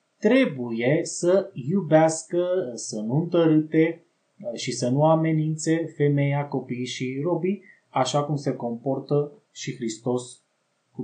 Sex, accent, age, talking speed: male, native, 20-39, 115 wpm